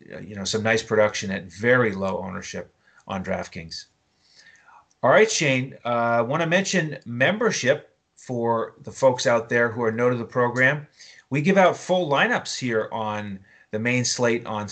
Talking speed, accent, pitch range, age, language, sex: 165 wpm, American, 110-140 Hz, 30-49, English, male